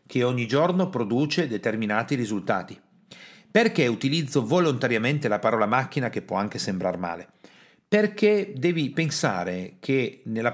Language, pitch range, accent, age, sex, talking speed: Italian, 110-160 Hz, native, 40-59, male, 125 wpm